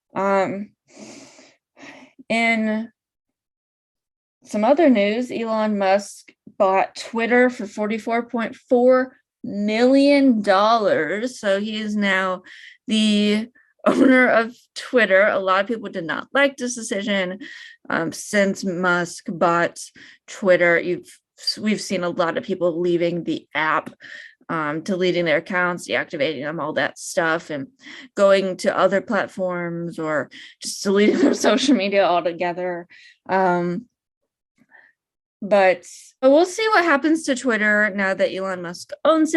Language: English